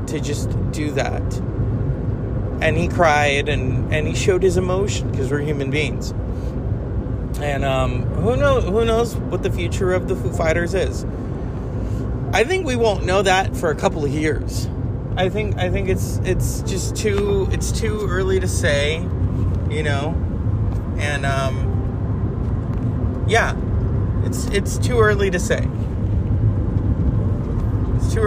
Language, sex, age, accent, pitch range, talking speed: English, male, 30-49, American, 105-145 Hz, 140 wpm